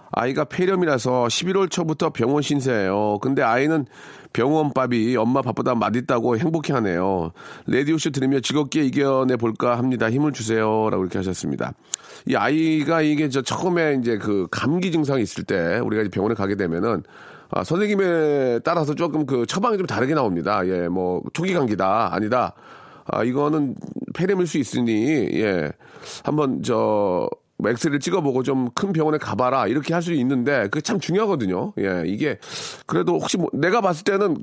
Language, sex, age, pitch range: Korean, male, 40-59, 115-165 Hz